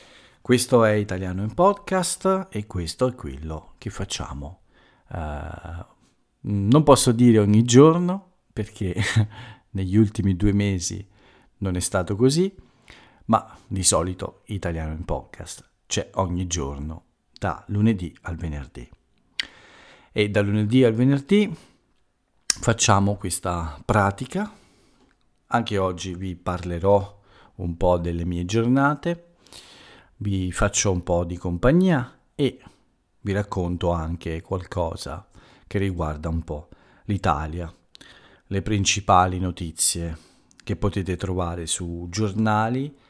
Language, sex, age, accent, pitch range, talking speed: Italian, male, 50-69, native, 85-115 Hz, 110 wpm